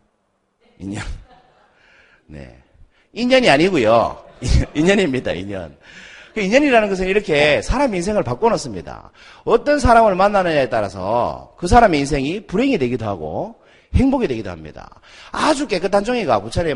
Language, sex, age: Korean, male, 40-59